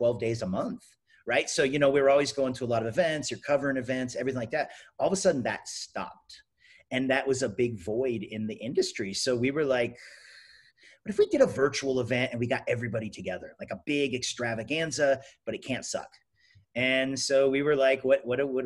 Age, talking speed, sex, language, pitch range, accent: 30-49, 225 wpm, male, English, 120-140 Hz, American